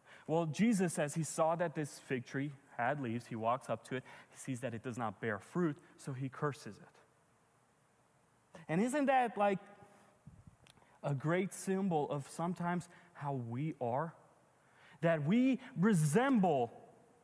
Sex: male